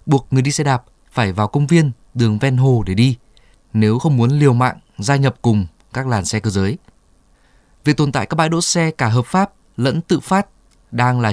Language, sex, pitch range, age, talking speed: Vietnamese, male, 115-150 Hz, 20-39, 220 wpm